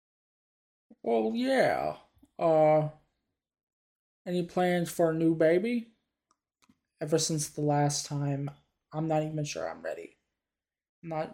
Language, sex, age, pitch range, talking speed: English, male, 20-39, 150-185 Hz, 110 wpm